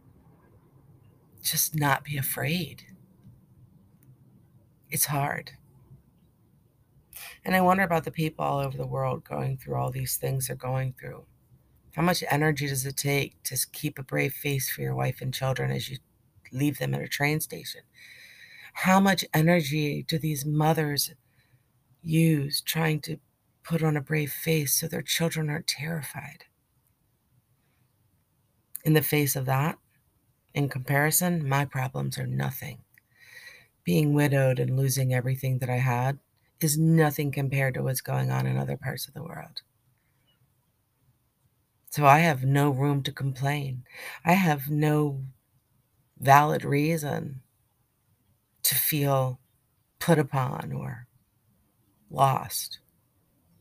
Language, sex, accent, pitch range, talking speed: English, female, American, 125-150 Hz, 130 wpm